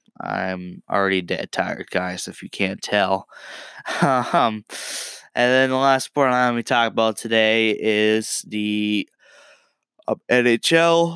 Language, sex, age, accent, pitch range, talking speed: English, male, 20-39, American, 105-135 Hz, 135 wpm